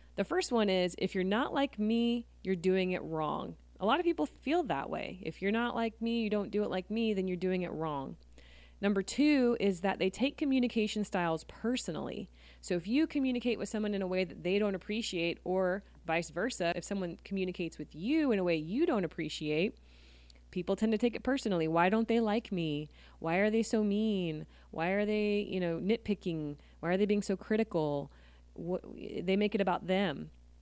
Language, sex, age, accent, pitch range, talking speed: English, female, 20-39, American, 165-210 Hz, 205 wpm